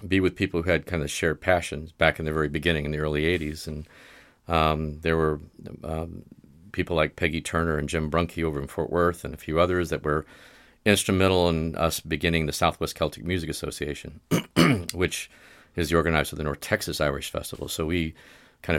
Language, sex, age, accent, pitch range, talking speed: English, male, 40-59, American, 75-90 Hz, 200 wpm